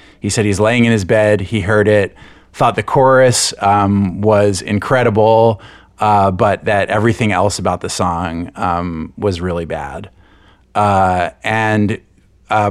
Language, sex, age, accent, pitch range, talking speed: English, male, 30-49, American, 95-115 Hz, 145 wpm